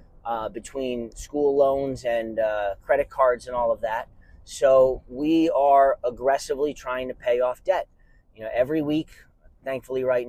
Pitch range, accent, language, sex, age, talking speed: 115-150 Hz, American, English, male, 30-49, 155 wpm